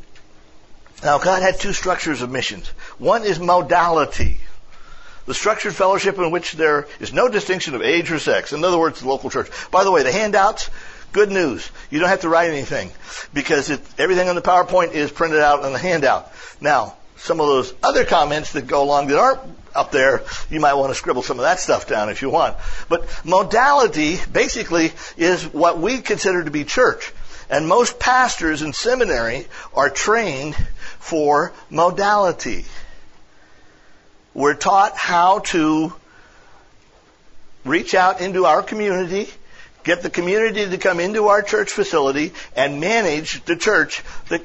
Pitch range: 160-210 Hz